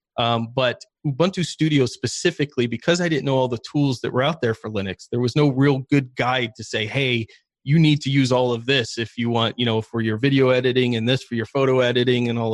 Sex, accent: male, American